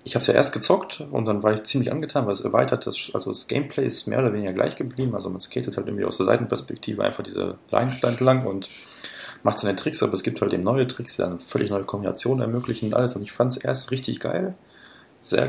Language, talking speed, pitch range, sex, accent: German, 250 wpm, 105-130 Hz, male, German